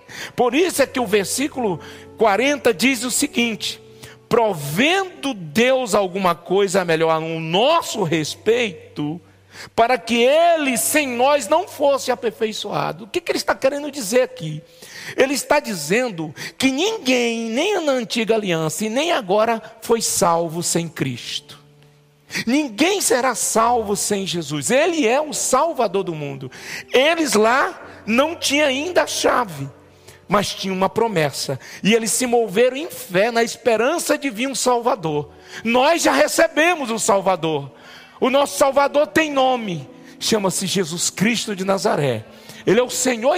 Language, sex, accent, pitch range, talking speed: Portuguese, male, Brazilian, 175-275 Hz, 145 wpm